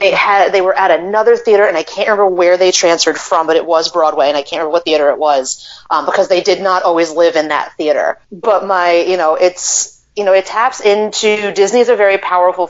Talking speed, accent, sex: 240 wpm, American, female